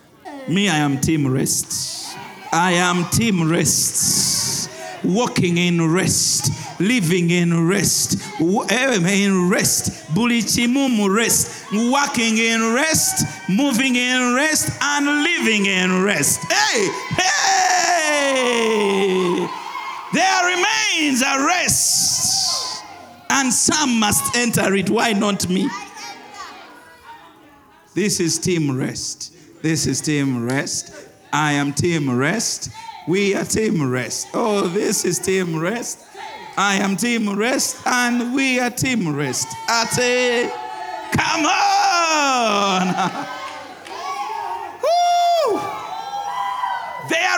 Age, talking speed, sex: 50-69, 105 wpm, male